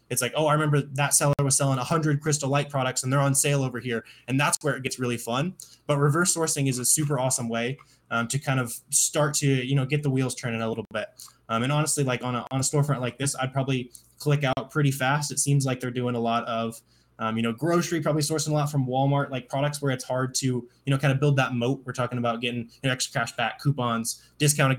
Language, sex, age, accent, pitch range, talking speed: English, male, 20-39, American, 120-140 Hz, 260 wpm